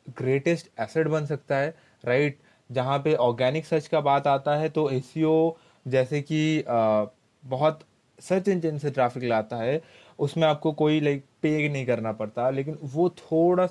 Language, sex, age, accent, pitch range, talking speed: Hindi, male, 20-39, native, 130-160 Hz, 165 wpm